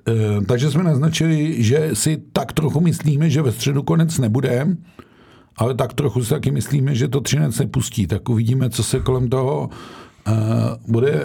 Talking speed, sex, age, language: 160 wpm, male, 50-69, Czech